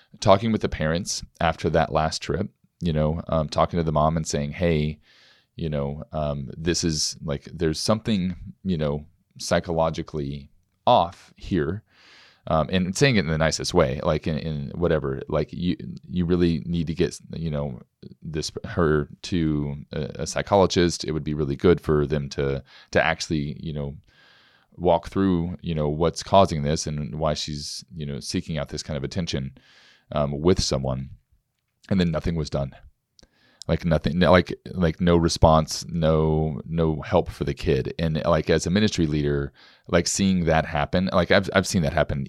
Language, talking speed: English, 175 wpm